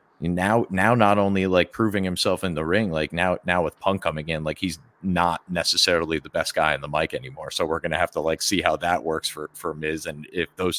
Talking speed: 245 wpm